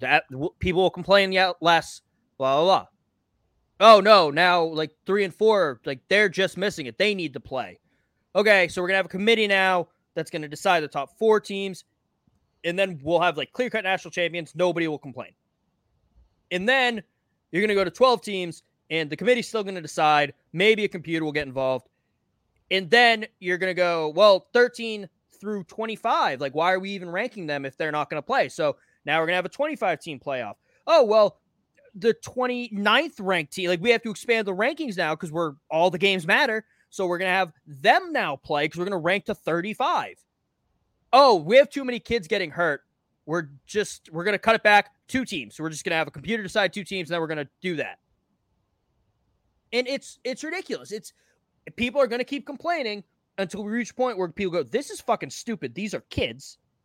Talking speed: 205 wpm